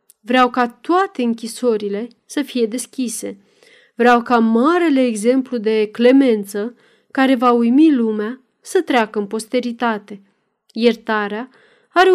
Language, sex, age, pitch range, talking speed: Romanian, female, 30-49, 220-280 Hz, 115 wpm